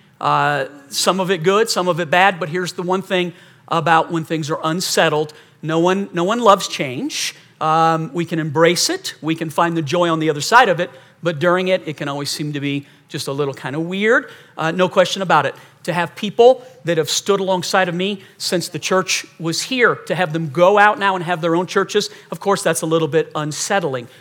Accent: American